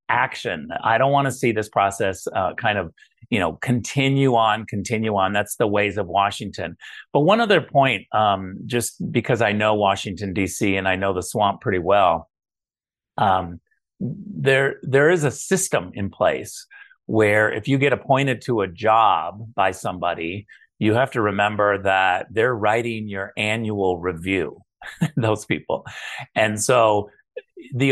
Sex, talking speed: male, 155 wpm